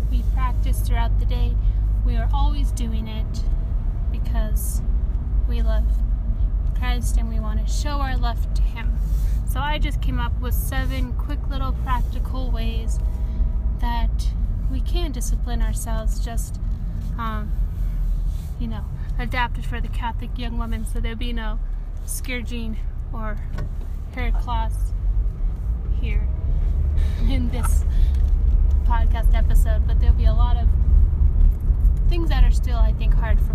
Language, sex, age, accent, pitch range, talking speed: English, female, 10-29, American, 70-85 Hz, 140 wpm